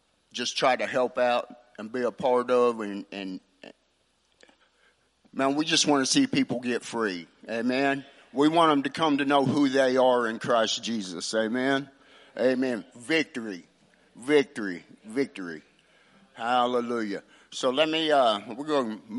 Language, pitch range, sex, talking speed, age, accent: English, 120-155 Hz, male, 150 wpm, 50-69, American